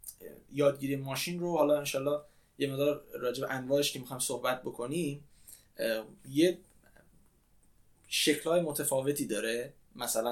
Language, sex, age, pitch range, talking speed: Persian, male, 20-39, 125-175 Hz, 105 wpm